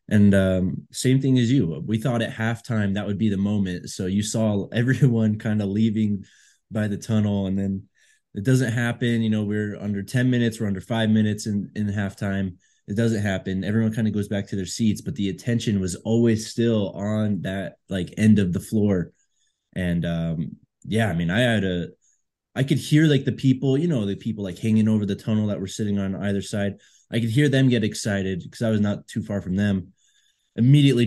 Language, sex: English, male